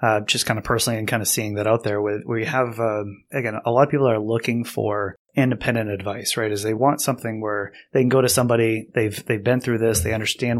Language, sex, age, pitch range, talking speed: English, male, 30-49, 110-125 Hz, 255 wpm